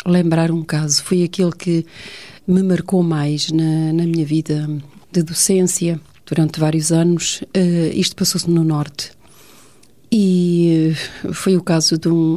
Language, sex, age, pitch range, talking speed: Portuguese, female, 40-59, 155-185 Hz, 145 wpm